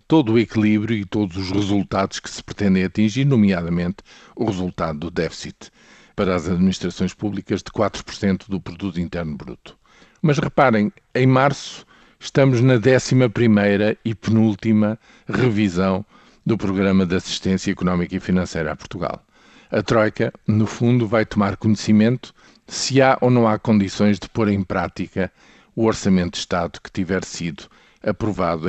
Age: 50-69